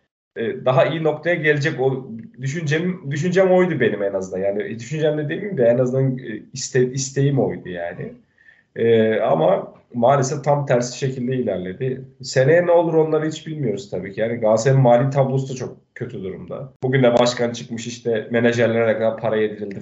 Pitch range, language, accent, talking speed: 120-145 Hz, Turkish, native, 160 wpm